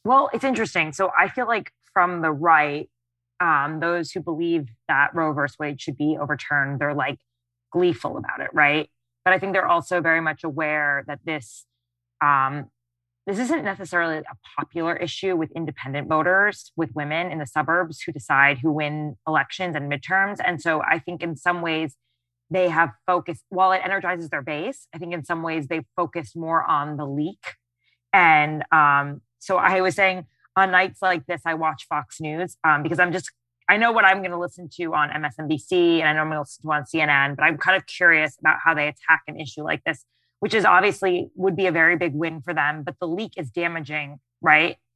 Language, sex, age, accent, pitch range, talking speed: English, female, 20-39, American, 145-175 Hz, 205 wpm